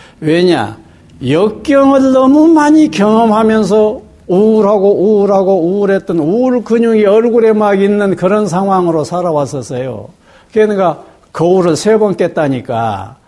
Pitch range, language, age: 130-200 Hz, Korean, 60-79